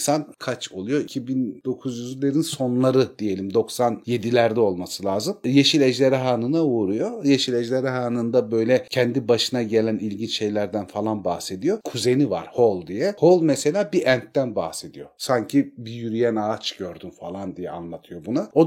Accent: native